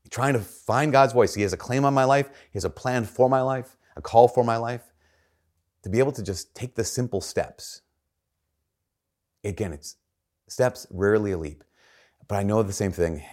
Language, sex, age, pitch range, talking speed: English, male, 30-49, 90-130 Hz, 205 wpm